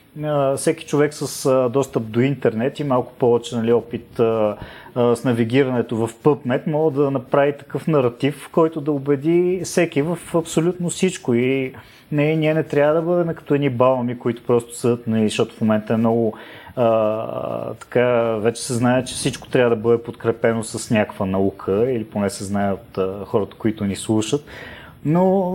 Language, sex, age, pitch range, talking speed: Bulgarian, male, 30-49, 115-155 Hz, 165 wpm